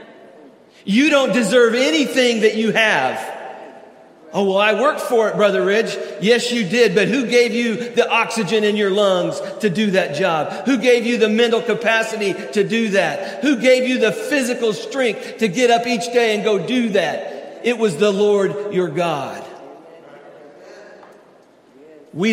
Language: English